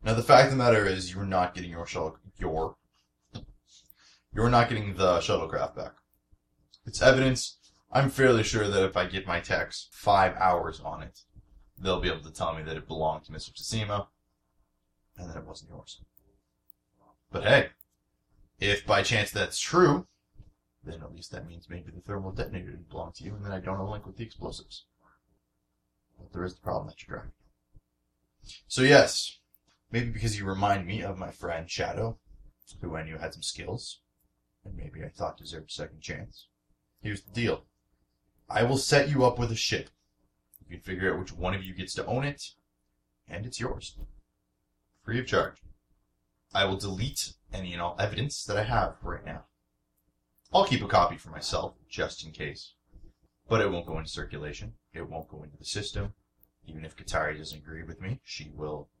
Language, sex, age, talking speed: English, male, 20-39, 190 wpm